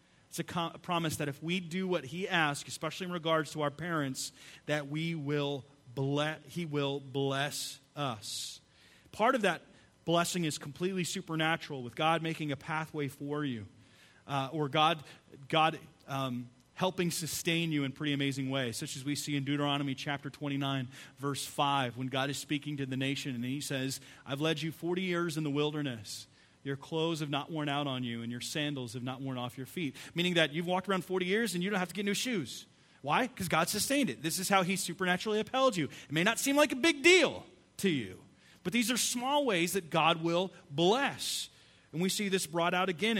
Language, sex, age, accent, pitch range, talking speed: English, male, 30-49, American, 140-180 Hz, 210 wpm